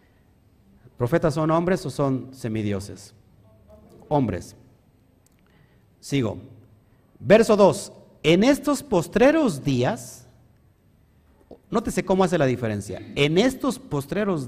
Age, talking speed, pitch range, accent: 50-69, 90 wpm, 115-180 Hz, Mexican